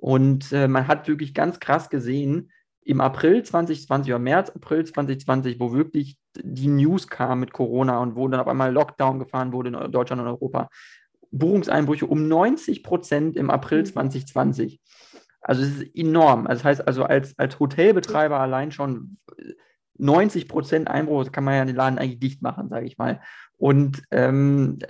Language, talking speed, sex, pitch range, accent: German, 170 wpm, male, 135-165 Hz, German